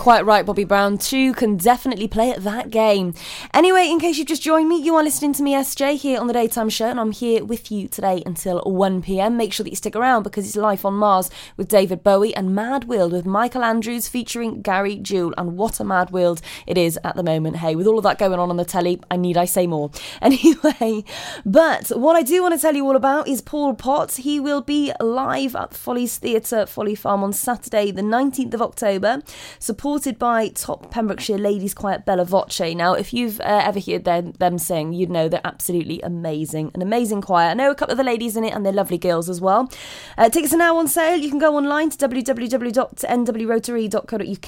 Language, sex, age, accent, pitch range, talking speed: English, female, 20-39, British, 190-255 Hz, 225 wpm